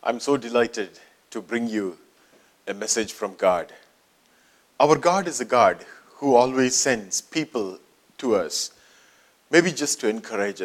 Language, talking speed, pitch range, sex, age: English, 140 wpm, 120-160 Hz, male, 40-59